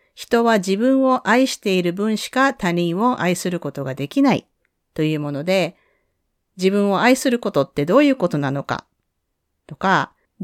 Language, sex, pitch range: Japanese, female, 160-255 Hz